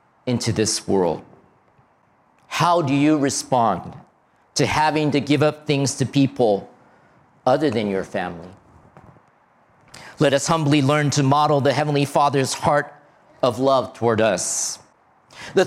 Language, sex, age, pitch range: Japanese, male, 50-69, 145-210 Hz